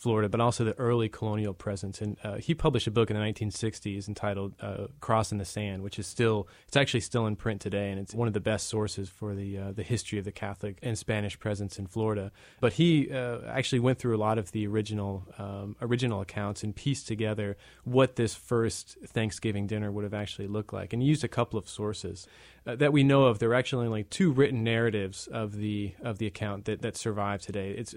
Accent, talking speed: American, 225 wpm